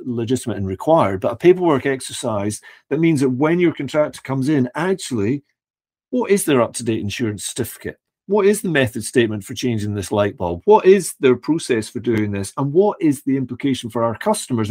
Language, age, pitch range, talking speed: English, 40-59, 115-150 Hz, 190 wpm